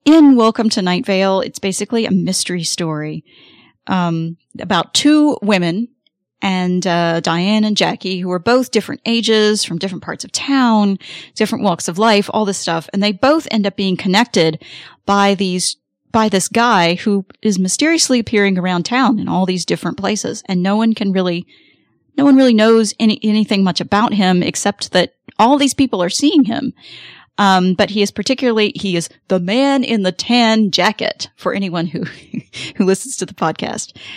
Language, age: English, 30-49